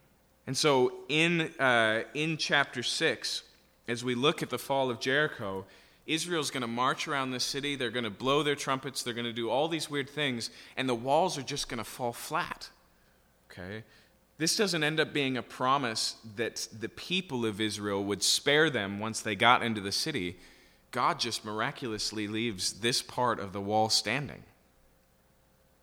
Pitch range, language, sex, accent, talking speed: 100-140 Hz, English, male, American, 180 wpm